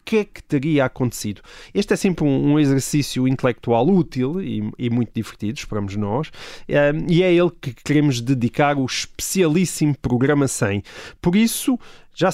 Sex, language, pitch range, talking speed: male, Portuguese, 130-180 Hz, 150 wpm